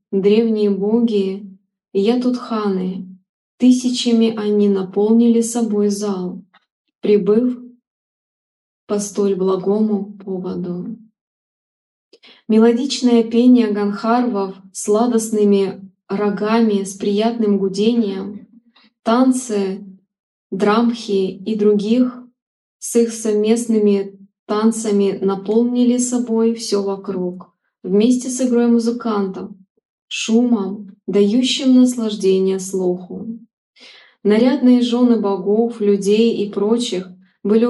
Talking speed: 80 wpm